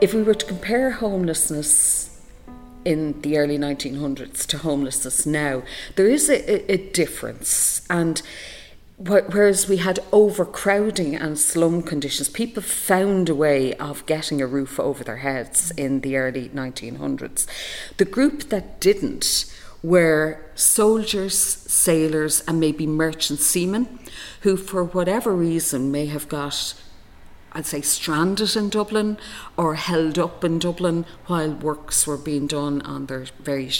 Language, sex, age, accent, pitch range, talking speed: English, female, 40-59, Irish, 140-190 Hz, 140 wpm